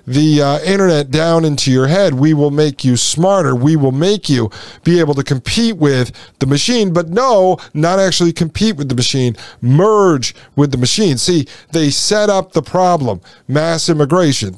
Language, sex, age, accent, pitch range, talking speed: English, male, 50-69, American, 140-180 Hz, 175 wpm